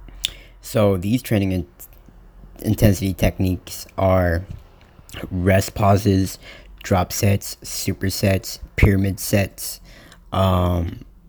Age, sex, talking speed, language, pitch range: 20-39, male, 85 wpm, English, 95-105 Hz